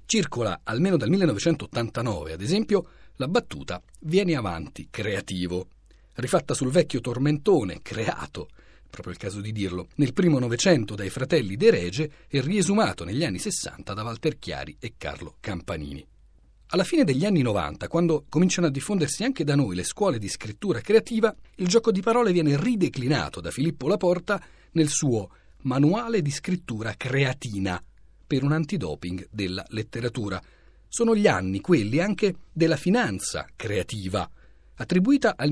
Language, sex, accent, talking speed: Italian, male, native, 145 wpm